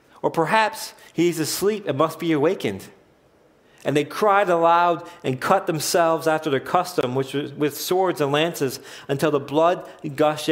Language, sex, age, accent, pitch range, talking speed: English, male, 40-59, American, 130-165 Hz, 160 wpm